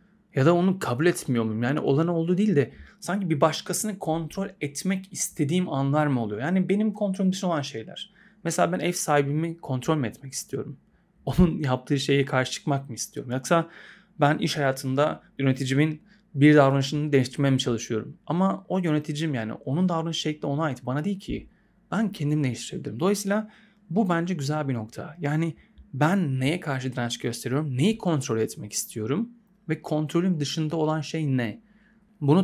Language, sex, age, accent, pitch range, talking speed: Turkish, male, 30-49, native, 135-185 Hz, 160 wpm